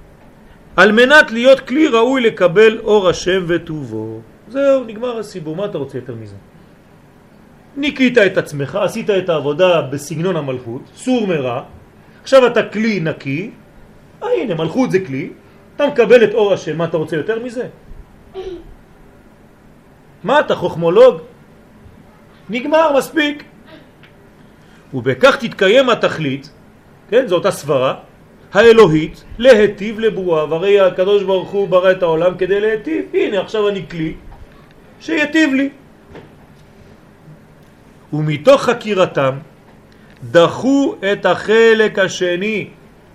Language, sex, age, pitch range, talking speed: French, male, 40-59, 175-250 Hz, 110 wpm